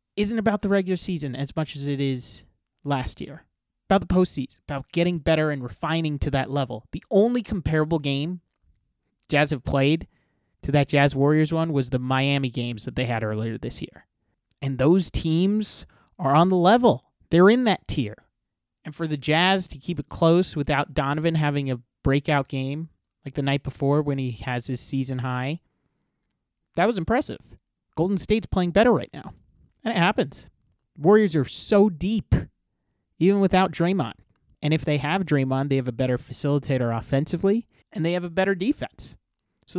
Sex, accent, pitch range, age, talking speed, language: male, American, 135-175 Hz, 30-49, 175 wpm, English